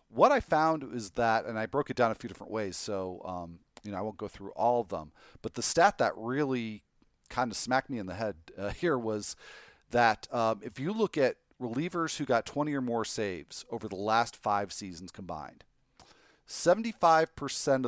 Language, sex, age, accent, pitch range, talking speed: English, male, 40-59, American, 105-130 Hz, 200 wpm